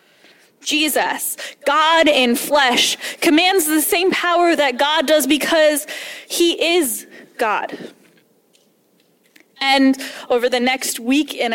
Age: 10-29